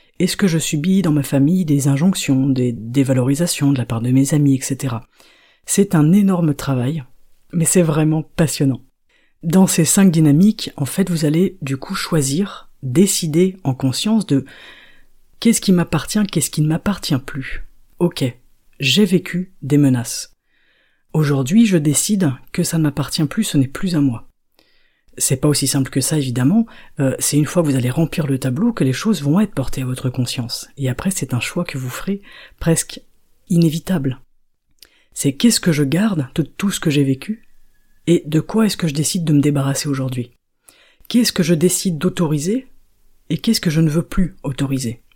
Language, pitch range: French, 135-180 Hz